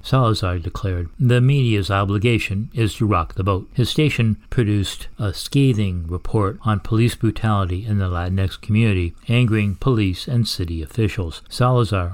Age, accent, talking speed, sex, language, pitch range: 60-79, American, 145 wpm, male, English, 95-115 Hz